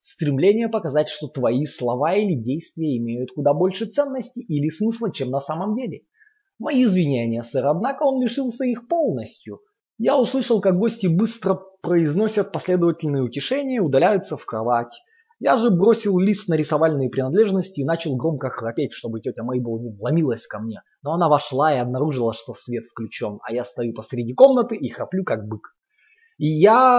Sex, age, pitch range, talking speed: male, 20-39, 140-225 Hz, 160 wpm